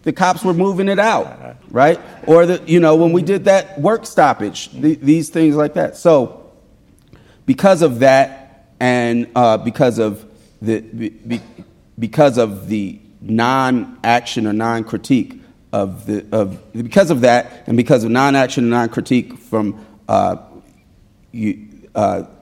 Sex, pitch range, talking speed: male, 110-150 Hz, 145 wpm